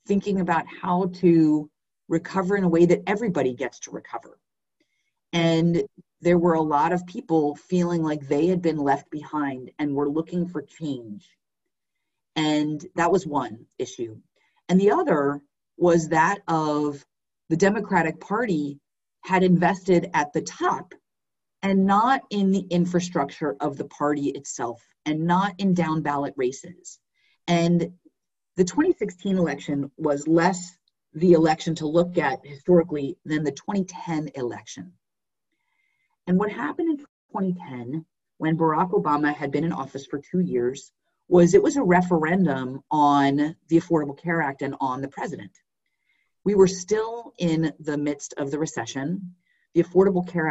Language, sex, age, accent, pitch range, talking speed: English, female, 40-59, American, 145-180 Hz, 145 wpm